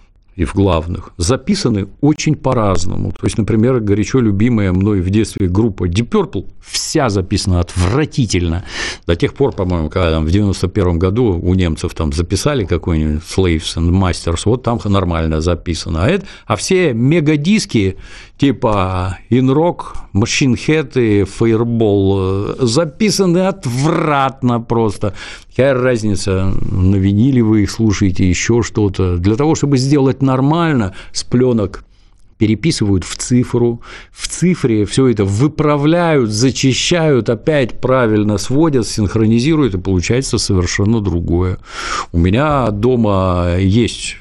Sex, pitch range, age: male, 95-125 Hz, 60-79